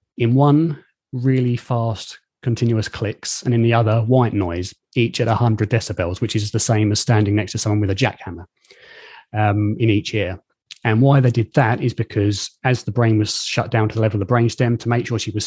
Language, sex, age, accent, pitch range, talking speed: English, male, 30-49, British, 105-125 Hz, 215 wpm